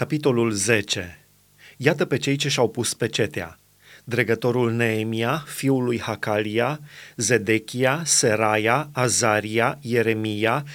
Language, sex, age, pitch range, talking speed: Romanian, male, 30-49, 110-140 Hz, 105 wpm